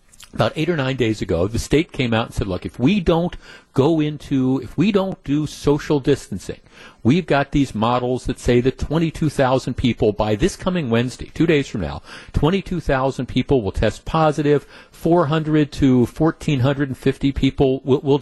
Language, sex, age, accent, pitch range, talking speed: English, male, 50-69, American, 115-145 Hz, 170 wpm